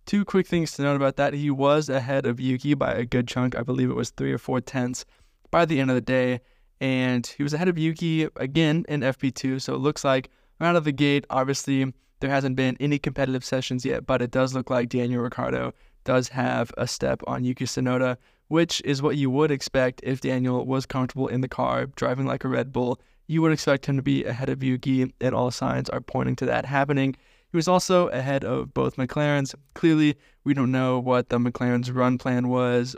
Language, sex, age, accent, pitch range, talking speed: English, male, 20-39, American, 125-140 Hz, 220 wpm